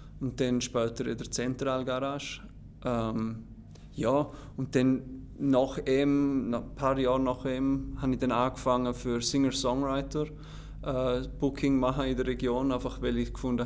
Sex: male